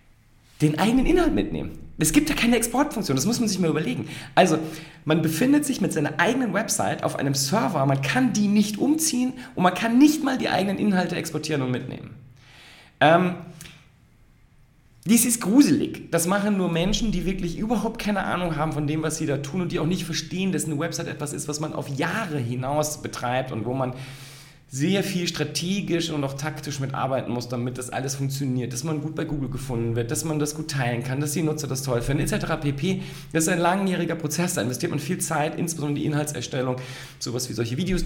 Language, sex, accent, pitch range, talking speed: German, male, German, 135-180 Hz, 205 wpm